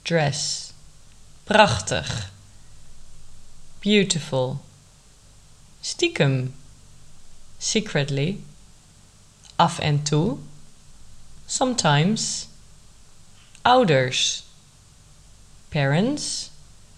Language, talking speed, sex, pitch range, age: Dutch, 40 wpm, female, 135-180 Hz, 20-39